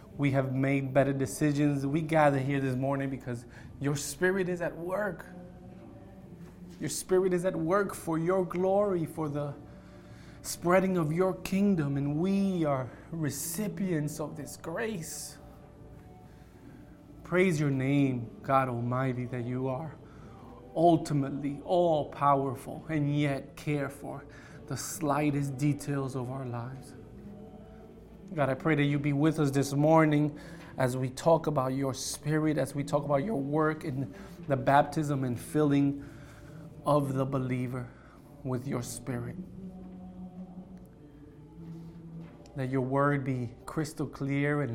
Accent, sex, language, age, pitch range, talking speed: American, male, English, 20-39, 130-160 Hz, 130 wpm